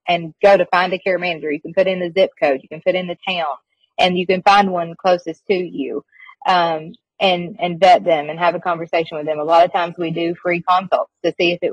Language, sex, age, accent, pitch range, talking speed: English, female, 30-49, American, 175-210 Hz, 260 wpm